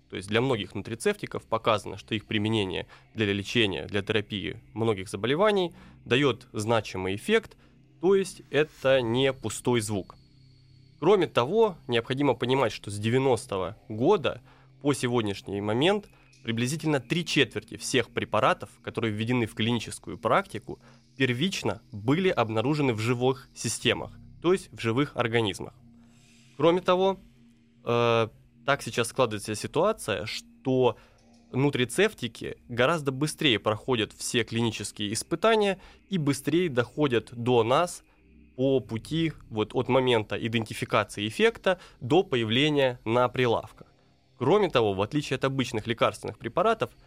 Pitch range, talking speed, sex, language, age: 110-140 Hz, 120 wpm, male, Russian, 20-39